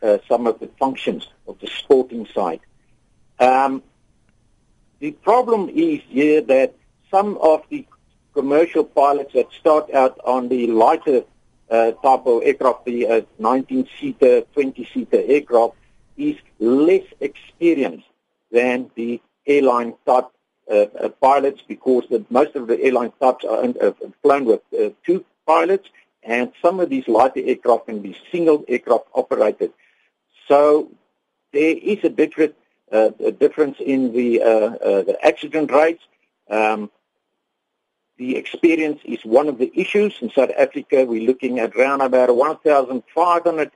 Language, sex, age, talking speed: English, male, 50-69, 135 wpm